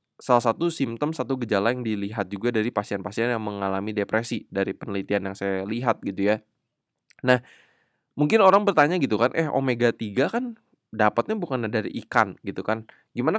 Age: 20-39